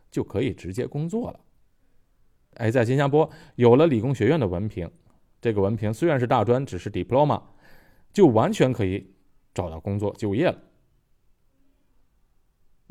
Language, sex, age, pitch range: Chinese, male, 20-39, 95-130 Hz